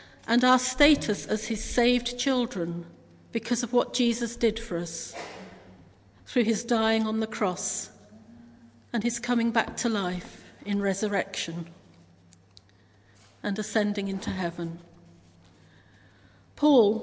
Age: 50-69